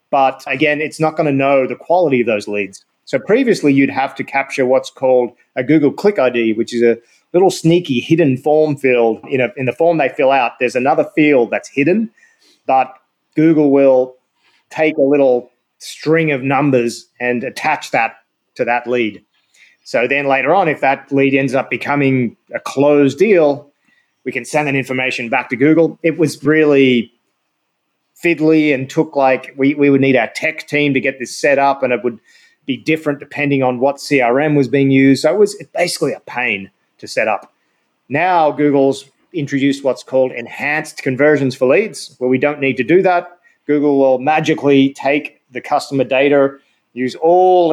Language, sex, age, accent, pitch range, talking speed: English, male, 30-49, Australian, 130-150 Hz, 180 wpm